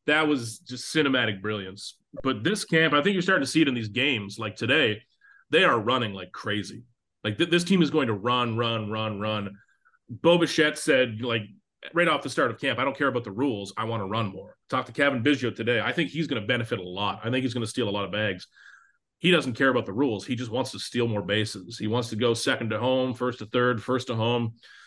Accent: American